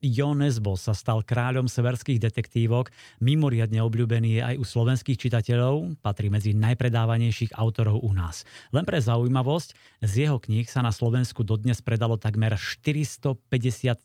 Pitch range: 105-130 Hz